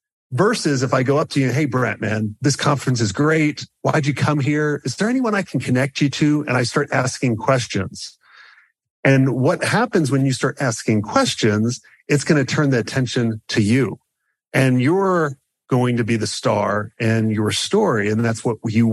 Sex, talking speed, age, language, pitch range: male, 195 wpm, 40-59, English, 115-150 Hz